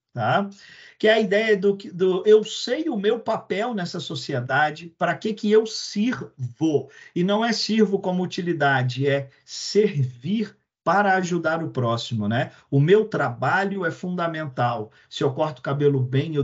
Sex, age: male, 50-69